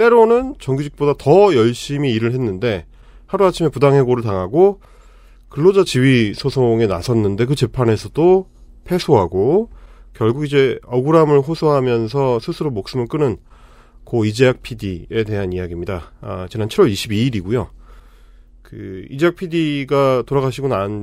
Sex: male